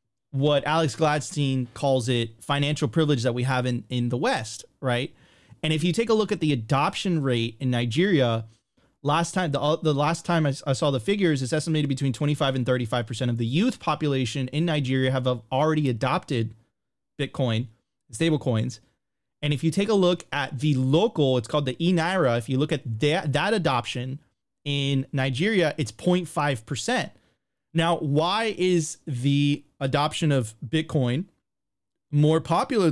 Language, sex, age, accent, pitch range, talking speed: English, male, 30-49, American, 130-160 Hz, 160 wpm